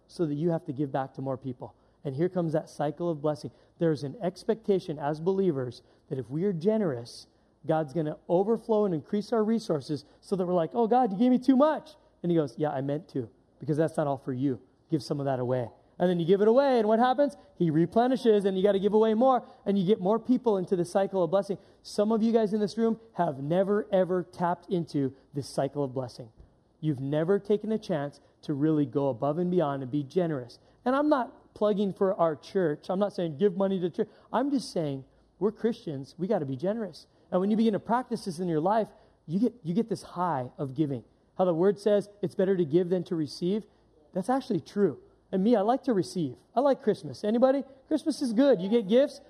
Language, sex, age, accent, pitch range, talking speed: English, male, 30-49, American, 150-220 Hz, 230 wpm